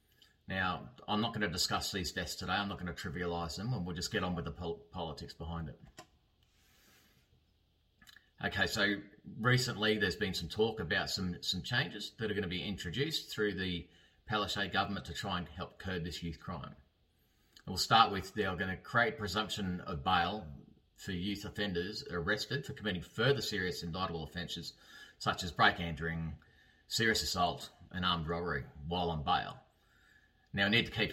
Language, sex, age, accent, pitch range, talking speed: English, male, 30-49, Australian, 85-105 Hz, 180 wpm